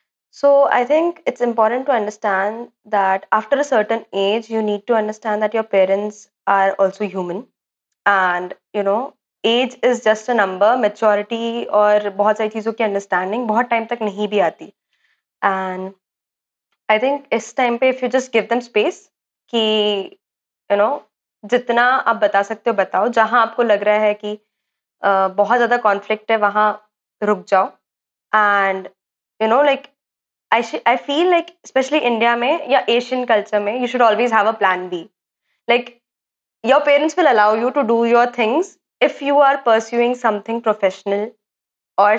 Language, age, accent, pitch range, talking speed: Hindi, 20-39, native, 205-240 Hz, 165 wpm